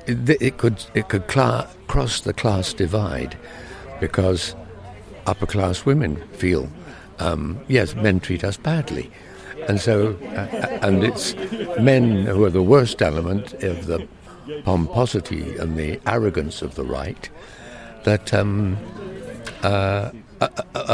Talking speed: 125 wpm